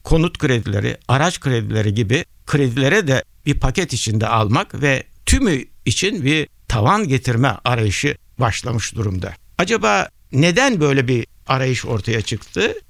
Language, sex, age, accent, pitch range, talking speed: Turkish, male, 60-79, native, 115-160 Hz, 125 wpm